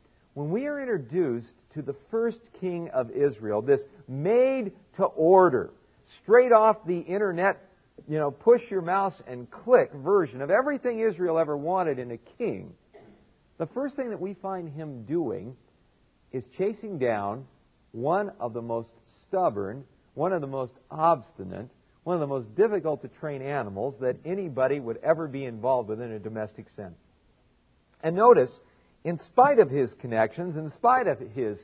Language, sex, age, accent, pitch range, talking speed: English, male, 50-69, American, 125-190 Hz, 160 wpm